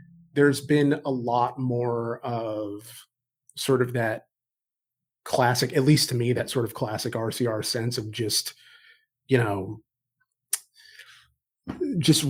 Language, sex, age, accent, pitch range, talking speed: English, male, 30-49, American, 120-145 Hz, 120 wpm